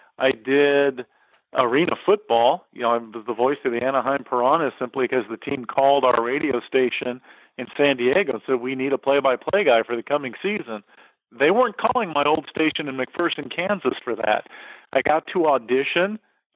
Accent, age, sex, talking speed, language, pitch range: American, 40-59, male, 185 wpm, English, 125-165 Hz